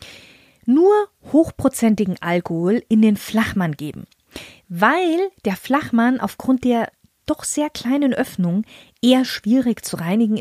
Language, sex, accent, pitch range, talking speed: German, female, German, 195-270 Hz, 115 wpm